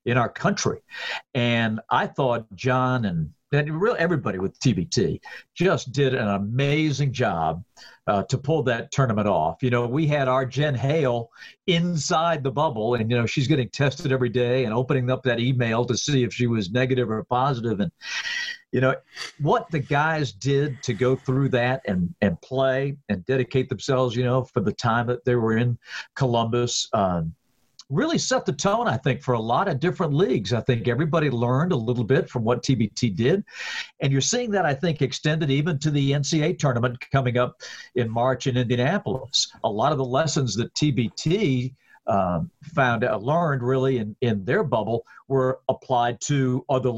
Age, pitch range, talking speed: 50-69, 120-145 Hz, 185 wpm